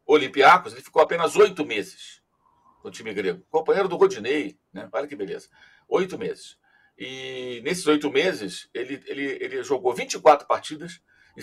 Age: 60-79